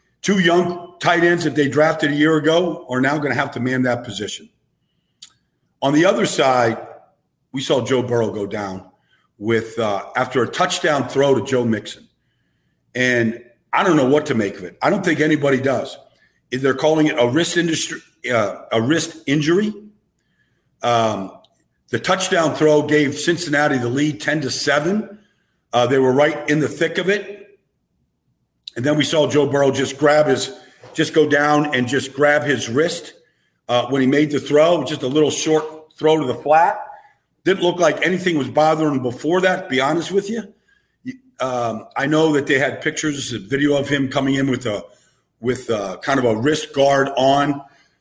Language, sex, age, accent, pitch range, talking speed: English, male, 50-69, American, 125-155 Hz, 185 wpm